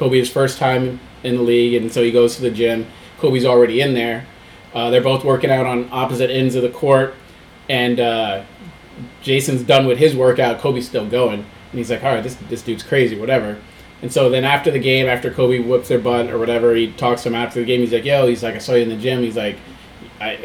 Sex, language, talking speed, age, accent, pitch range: male, English, 245 wpm, 30-49, American, 115-135 Hz